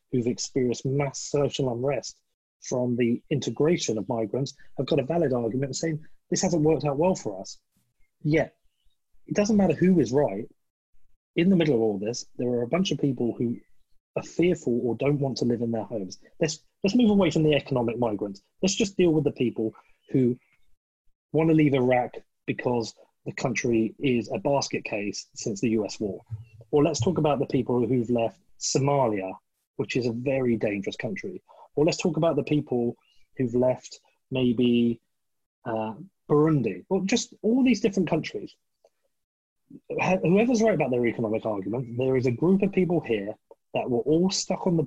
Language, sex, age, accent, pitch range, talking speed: English, male, 30-49, British, 120-160 Hz, 180 wpm